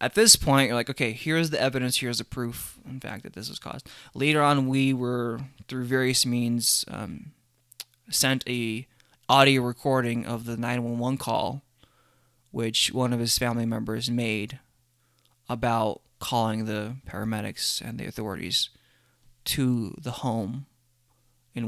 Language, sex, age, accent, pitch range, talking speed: English, male, 20-39, American, 120-135 Hz, 145 wpm